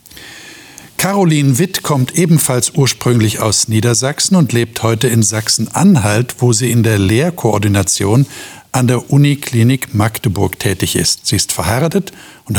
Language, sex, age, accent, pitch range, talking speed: German, male, 60-79, German, 110-145 Hz, 130 wpm